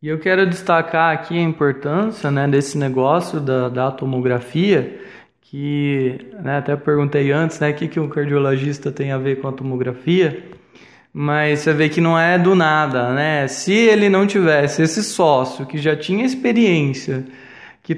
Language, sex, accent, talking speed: English, male, Brazilian, 165 wpm